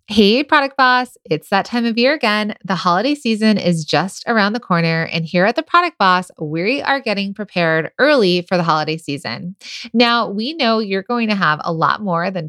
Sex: female